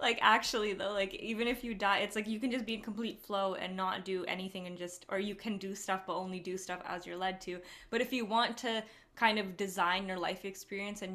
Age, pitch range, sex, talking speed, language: 20-39, 180-205 Hz, female, 260 wpm, English